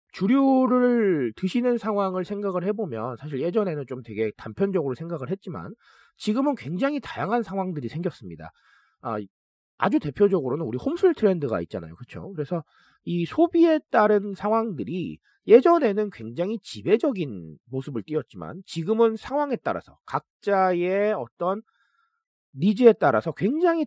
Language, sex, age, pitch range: Korean, male, 40-59, 145-225 Hz